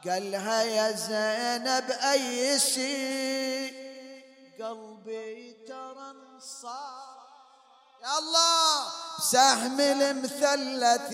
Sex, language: male, English